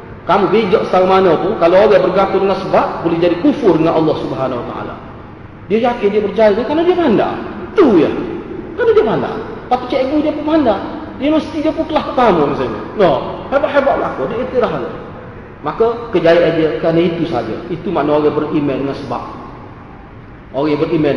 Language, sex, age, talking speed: Malay, male, 30-49, 175 wpm